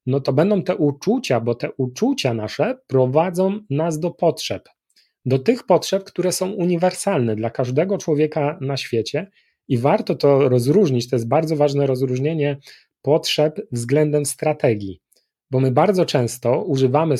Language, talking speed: Polish, 145 wpm